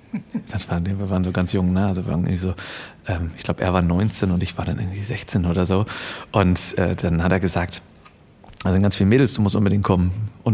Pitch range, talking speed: 100-140 Hz, 245 wpm